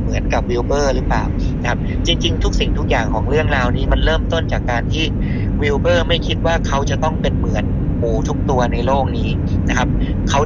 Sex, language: male, Thai